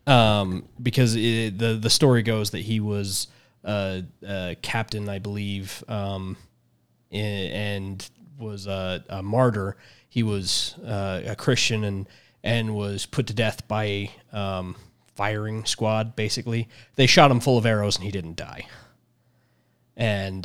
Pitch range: 100-120 Hz